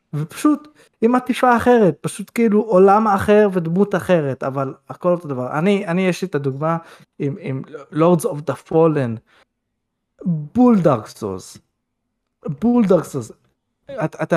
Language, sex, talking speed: Hebrew, male, 115 wpm